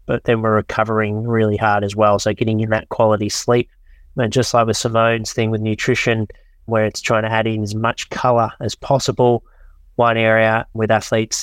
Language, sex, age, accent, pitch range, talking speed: English, male, 20-39, Australian, 110-120 Hz, 195 wpm